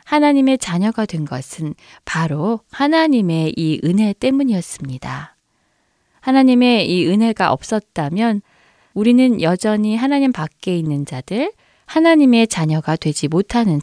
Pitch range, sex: 170-255 Hz, female